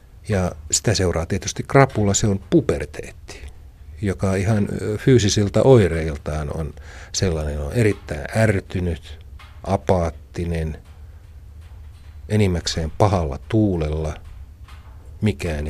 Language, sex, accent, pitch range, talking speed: Finnish, male, native, 80-95 Hz, 85 wpm